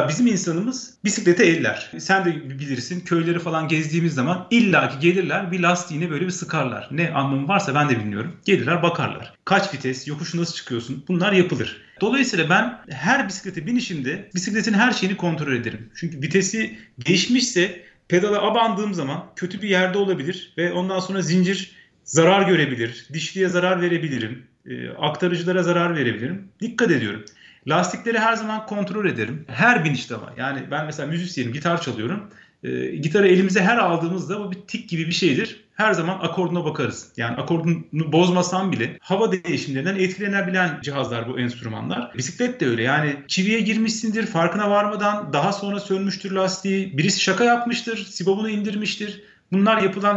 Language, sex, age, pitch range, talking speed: Turkish, male, 40-59, 150-200 Hz, 150 wpm